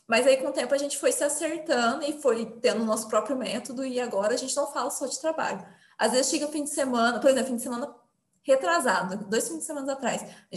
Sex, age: female, 20-39